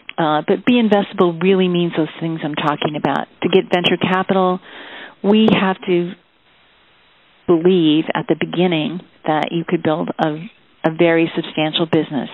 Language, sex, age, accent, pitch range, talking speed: English, female, 40-59, American, 160-190 Hz, 150 wpm